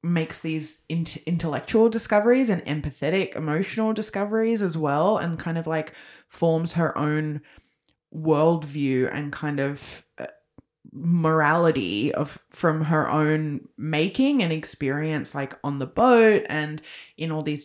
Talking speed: 135 wpm